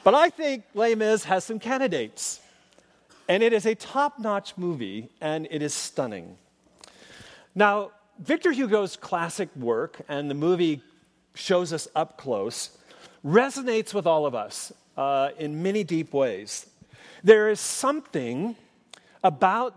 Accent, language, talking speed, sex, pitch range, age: American, English, 135 wpm, male, 150-215 Hz, 40-59